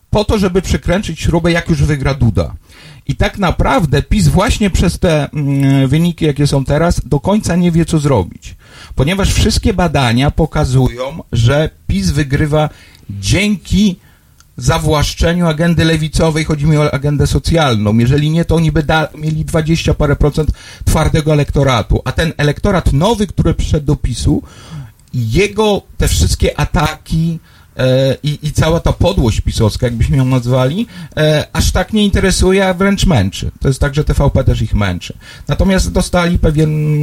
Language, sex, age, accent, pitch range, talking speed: Polish, male, 50-69, native, 125-165 Hz, 150 wpm